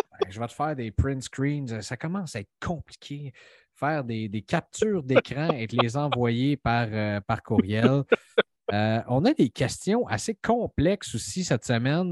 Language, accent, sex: French, Canadian, male